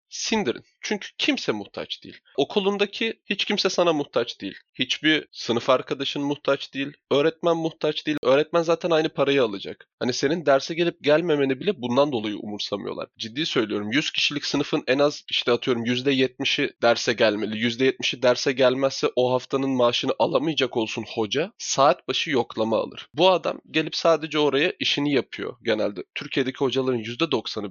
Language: Turkish